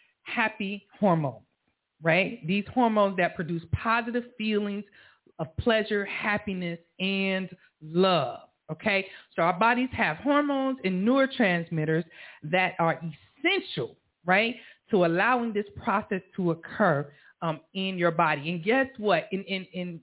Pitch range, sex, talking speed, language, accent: 160-195 Hz, female, 125 wpm, English, American